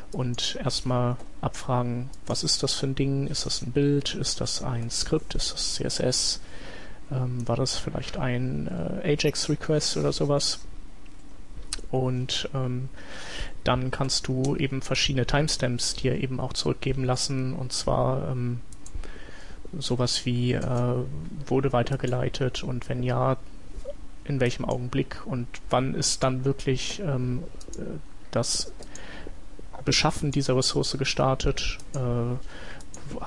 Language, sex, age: German, male, 30-49